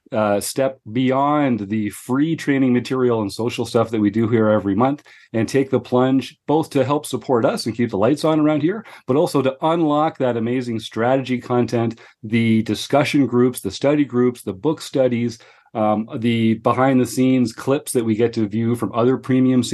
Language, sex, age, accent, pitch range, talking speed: English, male, 40-59, American, 110-135 Hz, 190 wpm